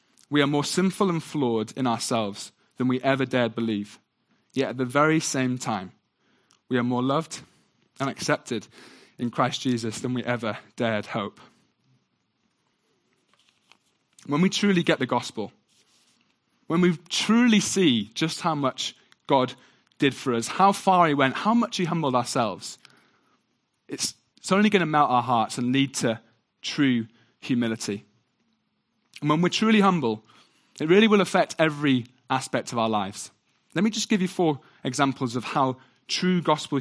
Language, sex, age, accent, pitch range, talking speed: English, male, 20-39, British, 120-170 Hz, 155 wpm